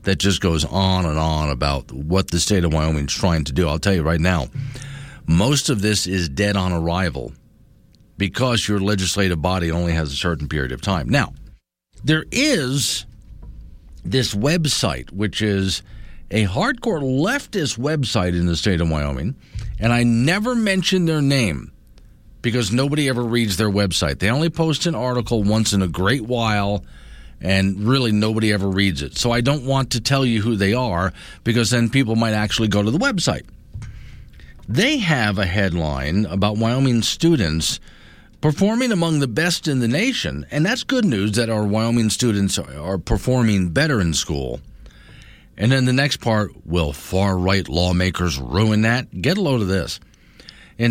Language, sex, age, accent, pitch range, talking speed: English, male, 50-69, American, 90-130 Hz, 170 wpm